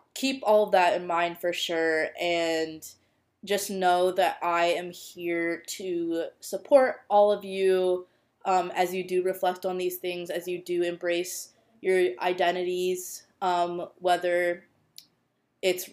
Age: 20-39